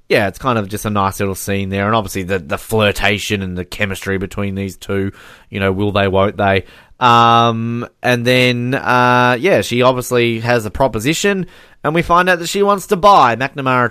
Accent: Australian